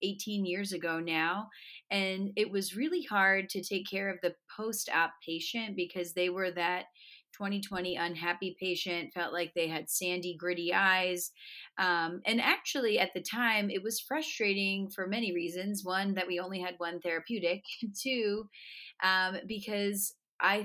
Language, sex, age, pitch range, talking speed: English, female, 30-49, 175-210 Hz, 155 wpm